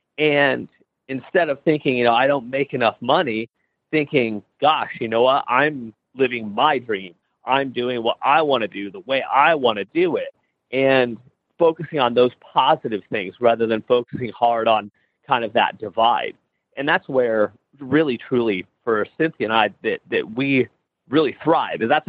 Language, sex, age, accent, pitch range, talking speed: English, male, 30-49, American, 120-145 Hz, 175 wpm